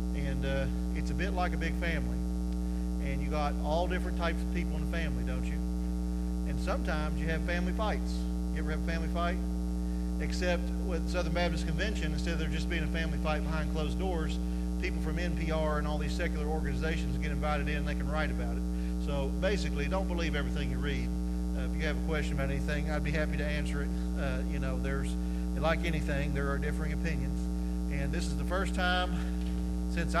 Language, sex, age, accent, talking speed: English, male, 40-59, American, 205 wpm